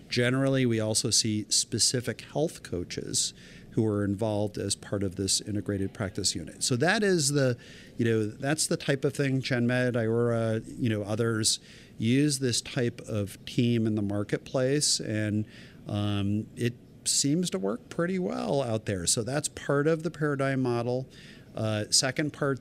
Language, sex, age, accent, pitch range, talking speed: English, male, 50-69, American, 110-140 Hz, 160 wpm